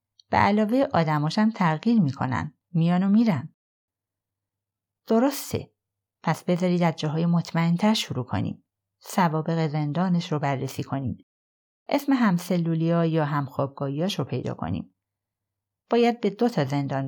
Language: Persian